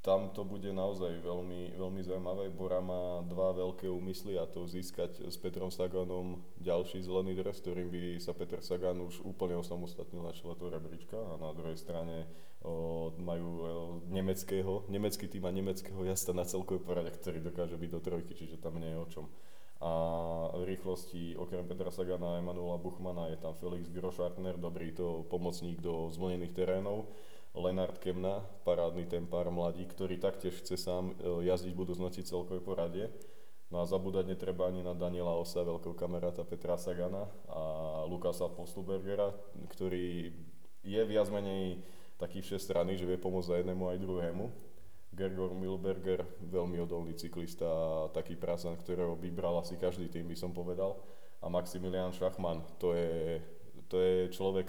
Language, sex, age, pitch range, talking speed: Slovak, male, 20-39, 85-95 Hz, 155 wpm